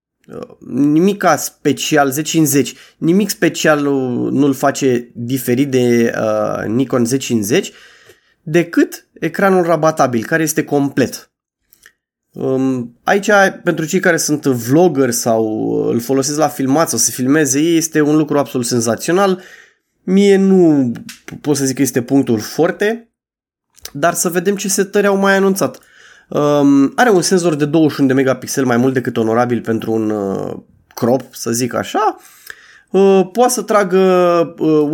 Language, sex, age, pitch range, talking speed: Romanian, male, 20-39, 135-185 Hz, 135 wpm